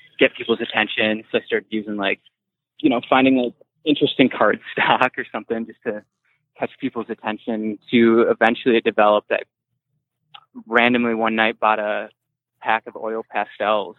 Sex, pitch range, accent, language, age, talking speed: male, 110-125 Hz, American, English, 20-39, 155 wpm